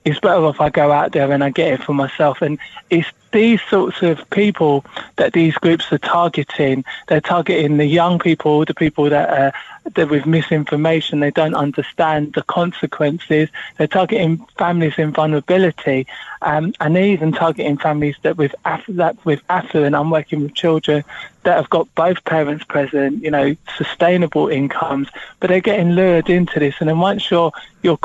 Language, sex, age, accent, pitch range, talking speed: English, male, 20-39, British, 145-170 Hz, 180 wpm